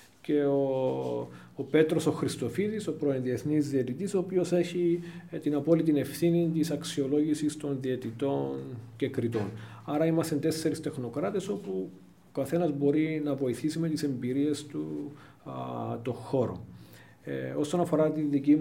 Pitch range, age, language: 120-150 Hz, 40-59, Greek